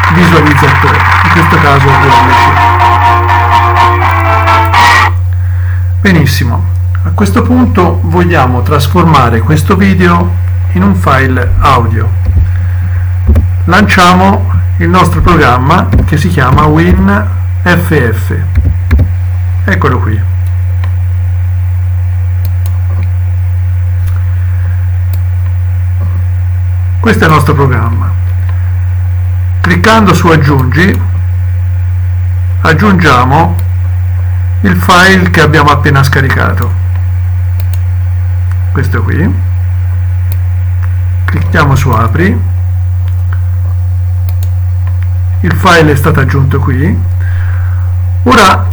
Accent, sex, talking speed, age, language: native, male, 65 wpm, 50-69, Italian